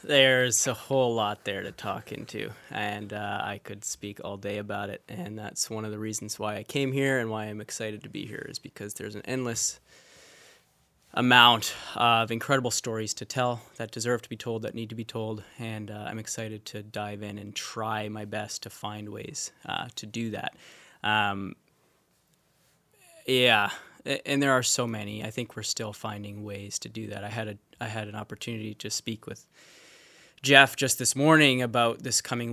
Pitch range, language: 105-120 Hz, English